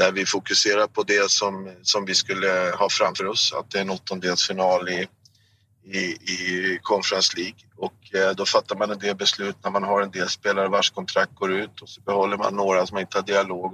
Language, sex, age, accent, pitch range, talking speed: Swedish, male, 30-49, native, 100-145 Hz, 205 wpm